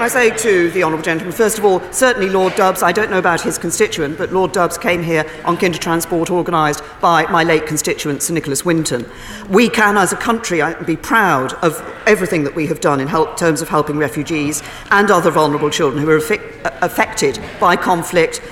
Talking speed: 195 wpm